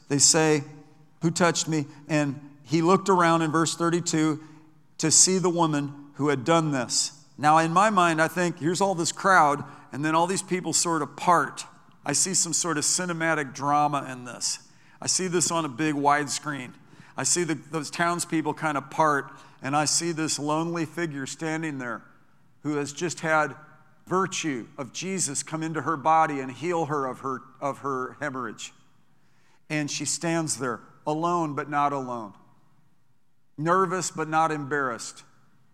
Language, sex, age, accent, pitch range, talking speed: English, male, 50-69, American, 140-165 Hz, 165 wpm